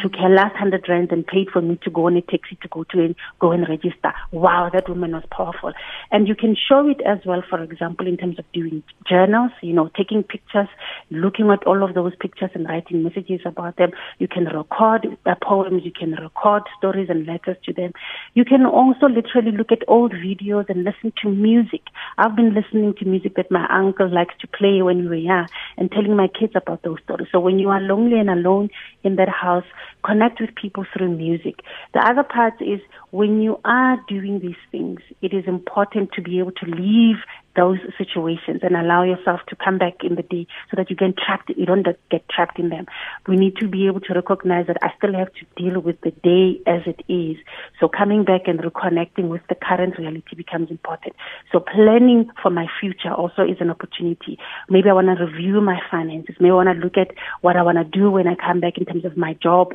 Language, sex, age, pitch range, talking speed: English, female, 30-49, 175-205 Hz, 220 wpm